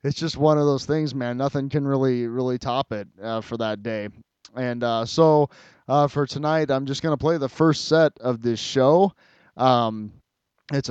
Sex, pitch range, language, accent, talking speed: male, 120-150 Hz, English, American, 200 wpm